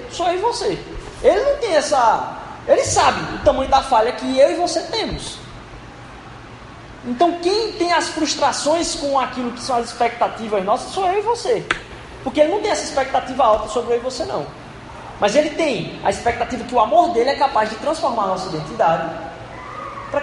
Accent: Brazilian